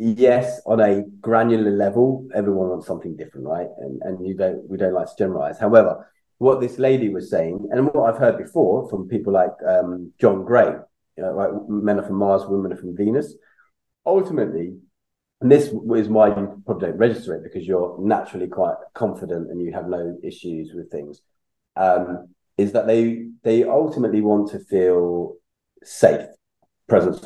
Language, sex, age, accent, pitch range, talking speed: English, male, 30-49, British, 95-115 Hz, 175 wpm